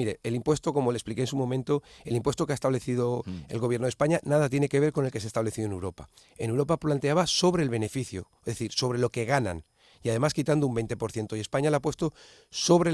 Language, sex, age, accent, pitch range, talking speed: Spanish, male, 40-59, Spanish, 115-150 Hz, 245 wpm